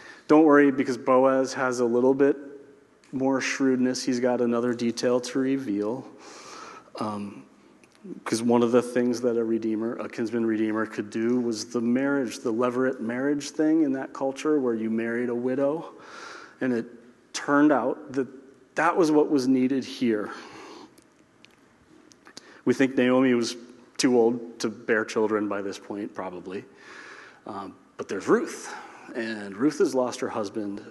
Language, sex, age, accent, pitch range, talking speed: English, male, 30-49, American, 115-140 Hz, 155 wpm